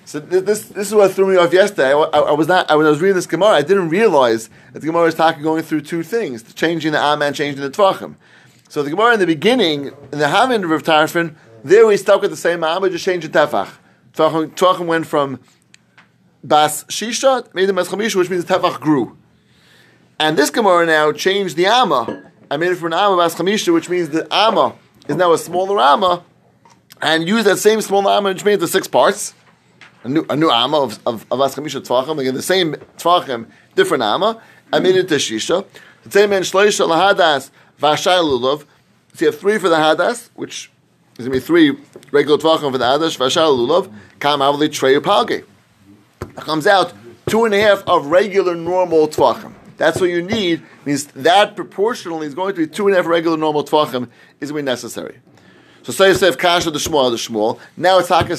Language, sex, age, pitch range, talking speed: English, male, 30-49, 150-190 Hz, 205 wpm